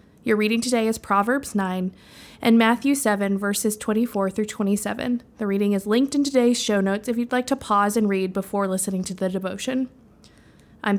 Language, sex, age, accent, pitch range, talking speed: English, female, 20-39, American, 210-280 Hz, 185 wpm